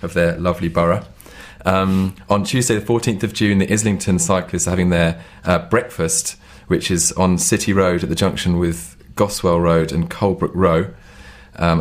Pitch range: 85-95 Hz